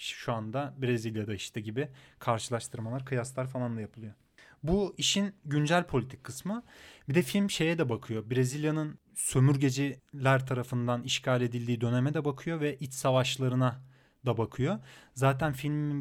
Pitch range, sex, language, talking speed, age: 125-150 Hz, male, Turkish, 135 wpm, 30-49